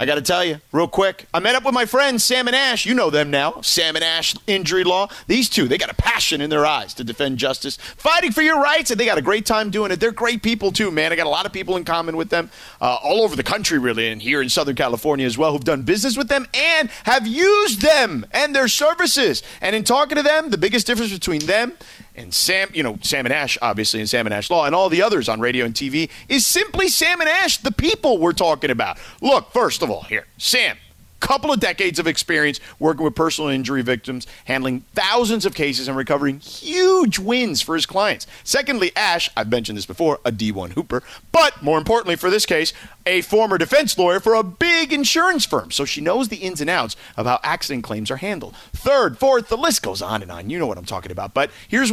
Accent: American